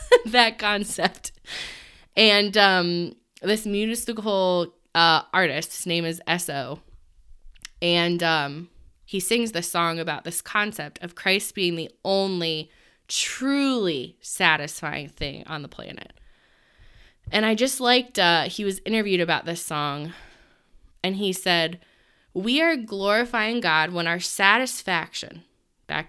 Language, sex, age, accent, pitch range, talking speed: English, female, 20-39, American, 170-210 Hz, 125 wpm